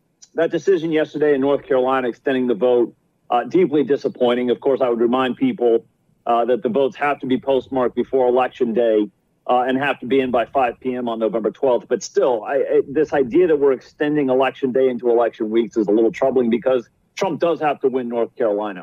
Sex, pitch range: male, 120-155 Hz